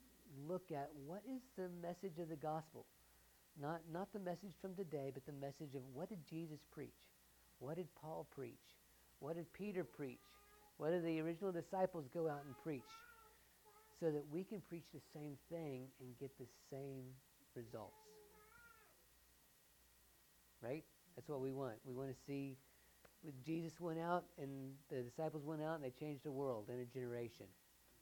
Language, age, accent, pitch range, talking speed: English, 50-69, American, 125-170 Hz, 170 wpm